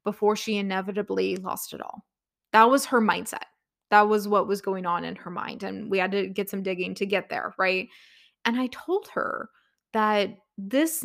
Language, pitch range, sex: English, 190-225 Hz, female